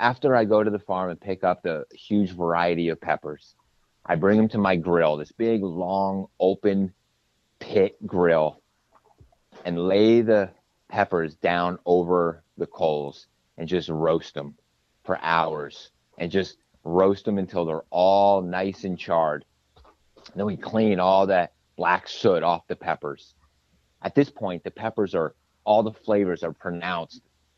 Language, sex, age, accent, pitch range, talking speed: English, male, 30-49, American, 80-100 Hz, 155 wpm